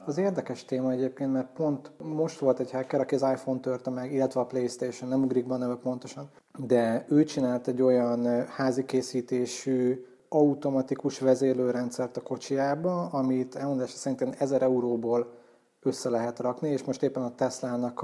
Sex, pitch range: male, 125-140 Hz